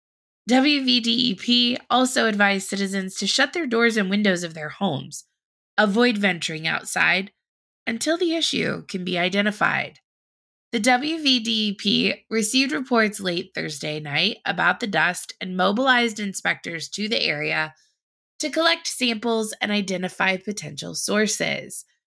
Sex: female